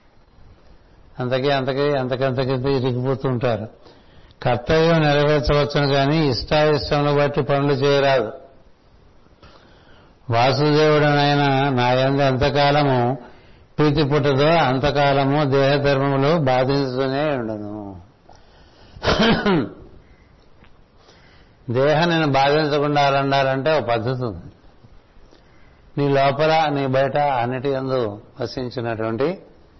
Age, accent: 60-79, native